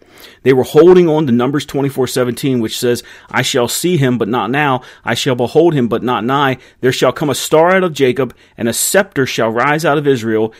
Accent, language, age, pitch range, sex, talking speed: American, English, 30-49, 110-150 Hz, male, 220 wpm